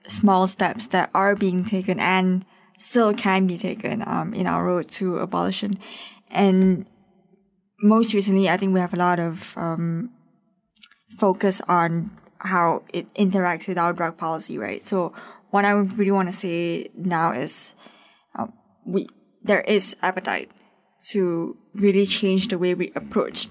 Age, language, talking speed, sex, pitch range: 20-39, English, 150 wpm, female, 180-205 Hz